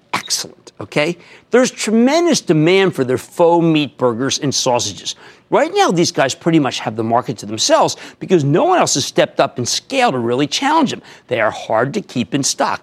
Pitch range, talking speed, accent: 130-205 Hz, 200 wpm, American